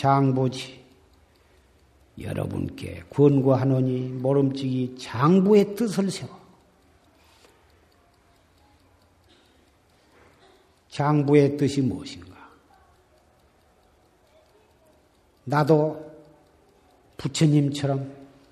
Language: Korean